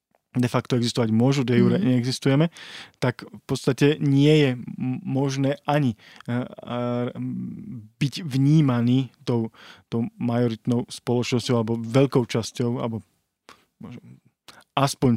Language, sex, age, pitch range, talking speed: Slovak, male, 20-39, 120-135 Hz, 95 wpm